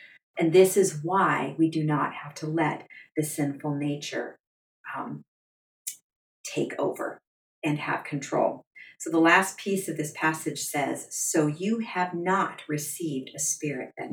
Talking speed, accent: 150 wpm, American